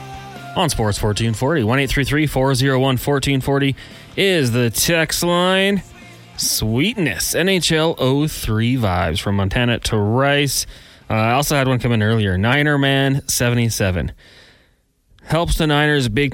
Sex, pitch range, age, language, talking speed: male, 105-135 Hz, 20-39, English, 120 wpm